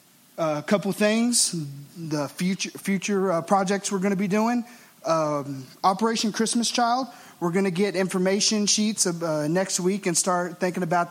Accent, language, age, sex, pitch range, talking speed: American, English, 20-39, male, 150-185 Hz, 175 wpm